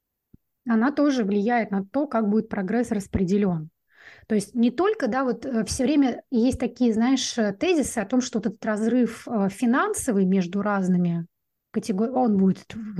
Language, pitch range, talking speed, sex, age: Russian, 195-240 Hz, 150 wpm, female, 20-39